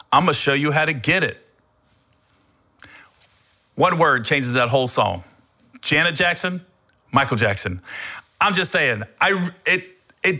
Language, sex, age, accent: English, male, 40-59, American